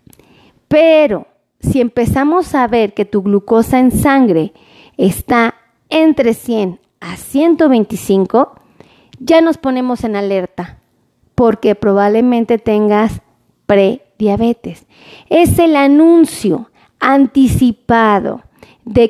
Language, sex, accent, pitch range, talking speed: Spanish, female, Mexican, 220-285 Hz, 90 wpm